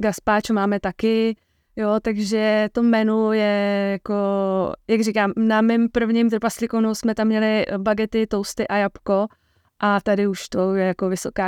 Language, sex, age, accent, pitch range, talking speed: Czech, female, 20-39, native, 195-220 Hz, 150 wpm